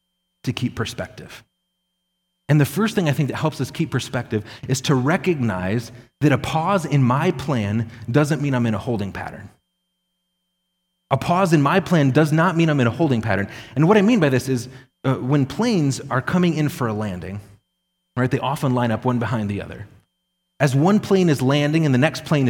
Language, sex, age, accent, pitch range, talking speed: English, male, 30-49, American, 125-175 Hz, 205 wpm